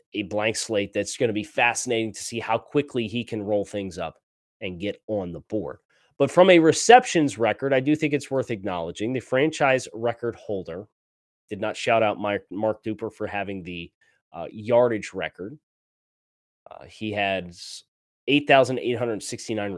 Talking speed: 155 wpm